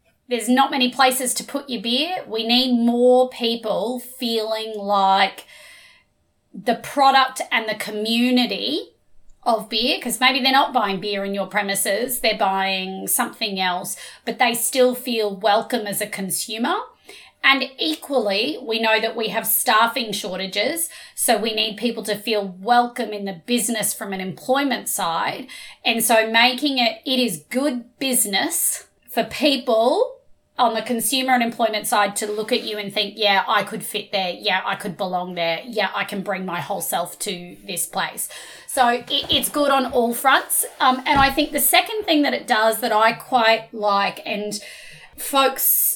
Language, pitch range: English, 205-255 Hz